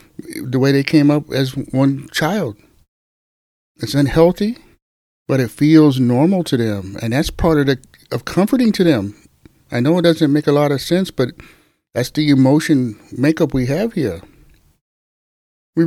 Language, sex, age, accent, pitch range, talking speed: English, male, 60-79, American, 125-165 Hz, 165 wpm